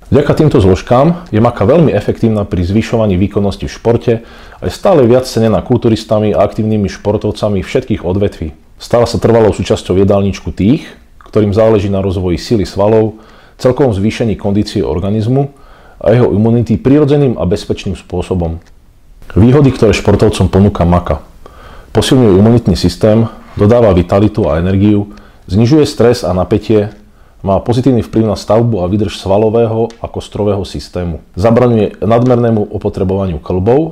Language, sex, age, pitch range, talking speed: Slovak, male, 40-59, 90-115 Hz, 135 wpm